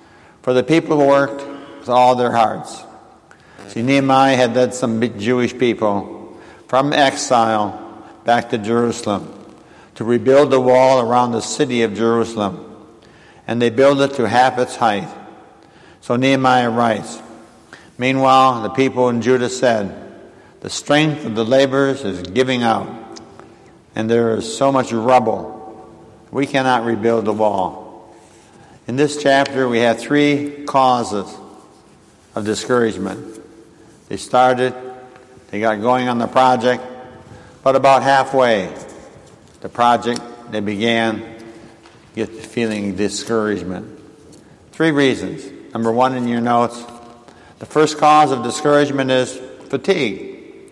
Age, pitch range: 60-79, 115-135 Hz